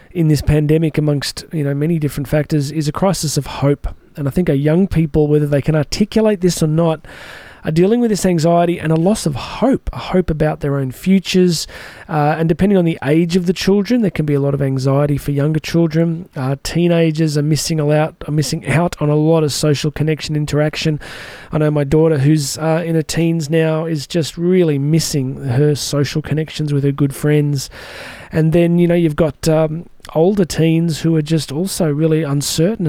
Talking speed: 210 wpm